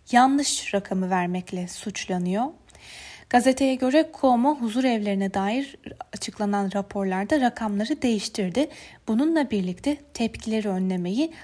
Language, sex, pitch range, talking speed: Turkish, female, 195-260 Hz, 95 wpm